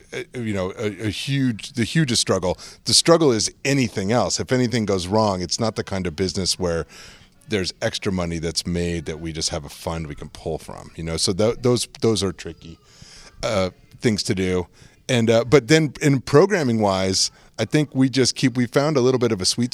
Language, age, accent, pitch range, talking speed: English, 30-49, American, 95-115 Hz, 215 wpm